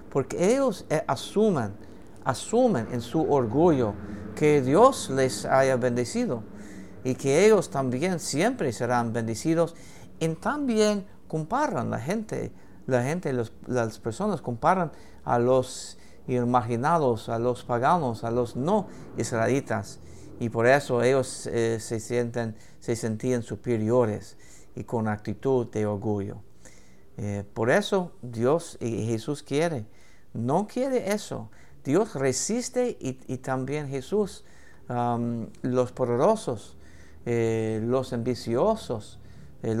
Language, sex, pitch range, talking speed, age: English, male, 105-140 Hz, 120 wpm, 50-69